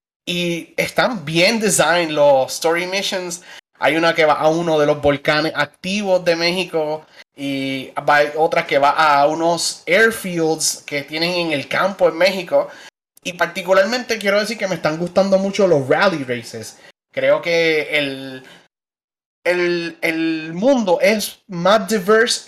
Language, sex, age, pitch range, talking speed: English, male, 30-49, 155-195 Hz, 150 wpm